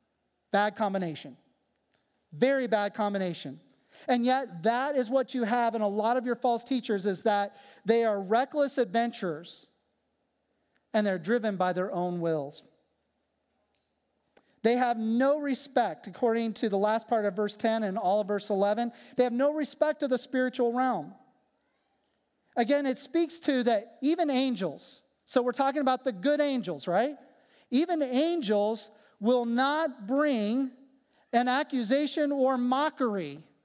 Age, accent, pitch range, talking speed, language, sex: 40-59, American, 220-280 Hz, 145 wpm, English, male